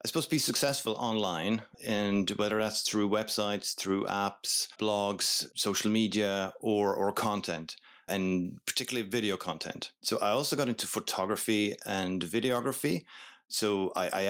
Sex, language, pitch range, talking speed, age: male, English, 90-110 Hz, 145 wpm, 30-49